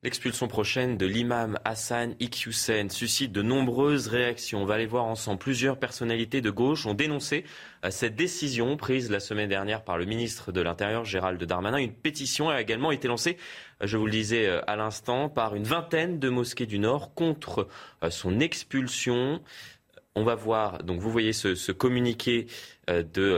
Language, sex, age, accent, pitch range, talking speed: French, male, 20-39, French, 100-130 Hz, 170 wpm